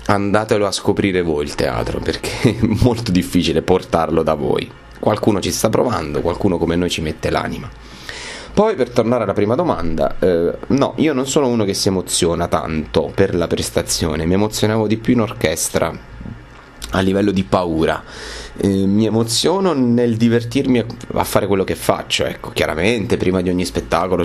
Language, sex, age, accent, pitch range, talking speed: Italian, male, 30-49, native, 85-105 Hz, 170 wpm